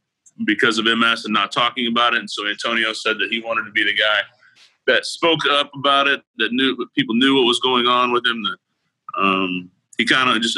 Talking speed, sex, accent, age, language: 235 wpm, male, American, 30-49, English